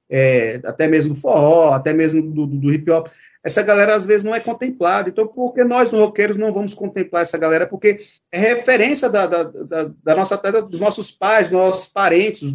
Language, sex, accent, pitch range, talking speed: English, male, Brazilian, 165-215 Hz, 210 wpm